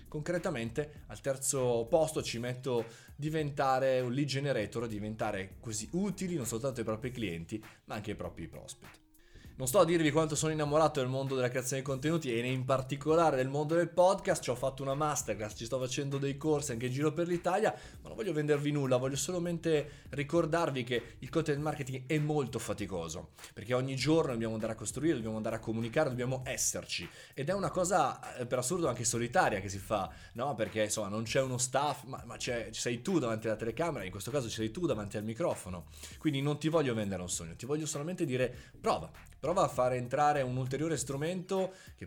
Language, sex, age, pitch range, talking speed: Italian, male, 20-39, 115-150 Hz, 205 wpm